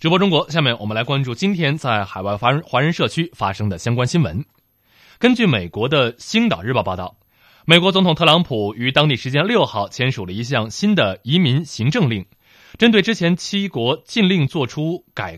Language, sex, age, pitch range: Chinese, male, 20-39, 120-180 Hz